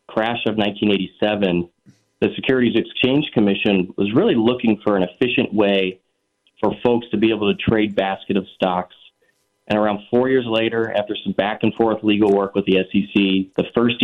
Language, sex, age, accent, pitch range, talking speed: English, male, 30-49, American, 100-110 Hz, 175 wpm